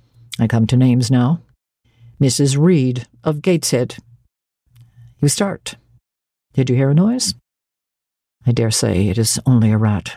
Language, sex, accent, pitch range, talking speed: English, female, American, 115-140 Hz, 140 wpm